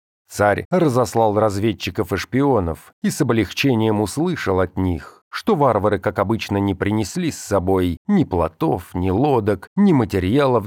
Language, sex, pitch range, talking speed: Russian, male, 95-115 Hz, 140 wpm